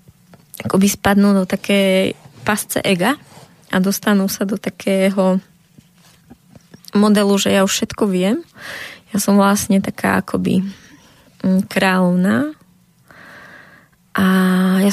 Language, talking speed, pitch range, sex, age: Slovak, 100 wpm, 180-200 Hz, female, 20-39